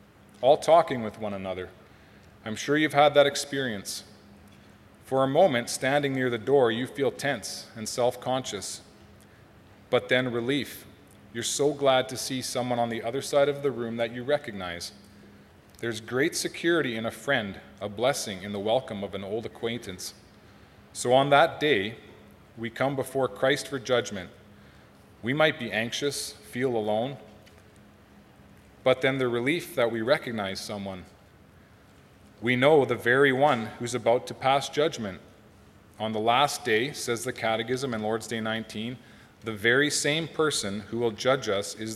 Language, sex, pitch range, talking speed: English, male, 105-130 Hz, 160 wpm